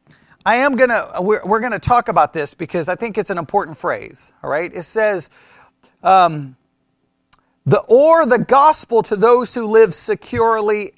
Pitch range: 185-245 Hz